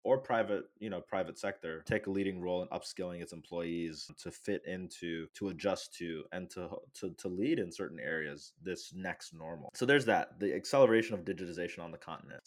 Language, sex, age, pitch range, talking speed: English, male, 20-39, 90-110 Hz, 195 wpm